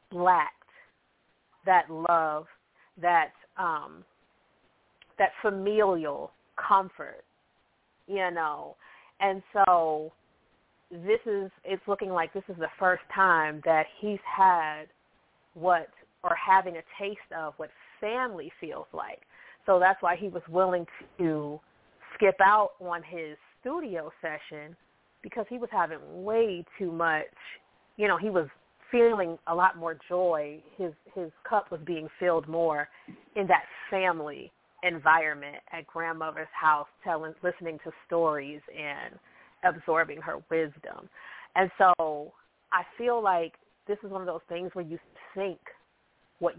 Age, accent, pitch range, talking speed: 30-49, American, 160-190 Hz, 130 wpm